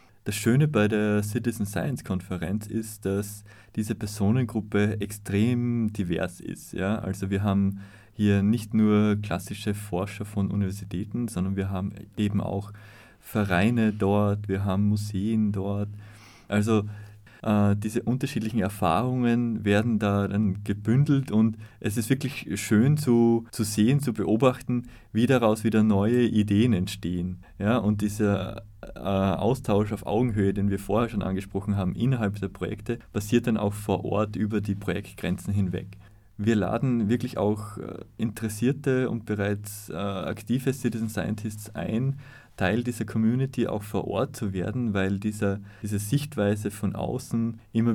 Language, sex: German, male